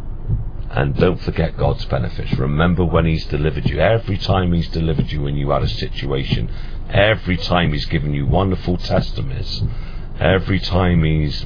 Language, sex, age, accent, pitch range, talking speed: English, male, 50-69, British, 80-105 Hz, 155 wpm